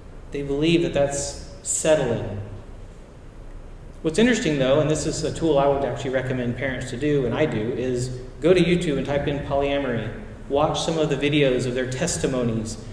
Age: 40-59